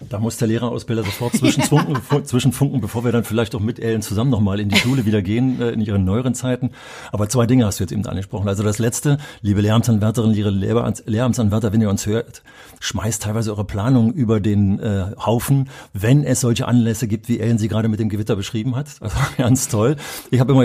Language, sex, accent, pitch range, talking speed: German, male, German, 105-125 Hz, 210 wpm